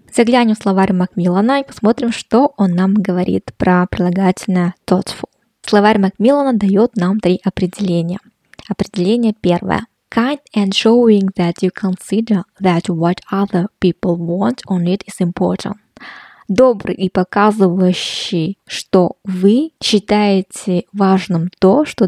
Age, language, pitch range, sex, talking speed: 20-39, Russian, 180-215 Hz, female, 85 wpm